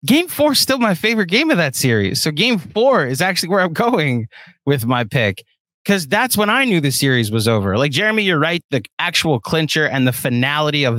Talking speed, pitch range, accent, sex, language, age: 225 wpm, 125-170 Hz, American, male, English, 20-39